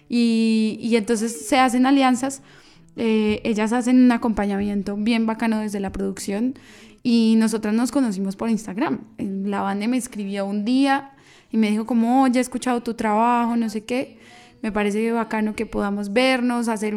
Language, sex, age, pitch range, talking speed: Spanish, female, 10-29, 205-245 Hz, 165 wpm